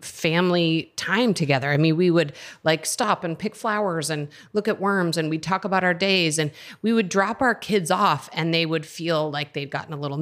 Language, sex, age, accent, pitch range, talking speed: English, female, 30-49, American, 150-190 Hz, 225 wpm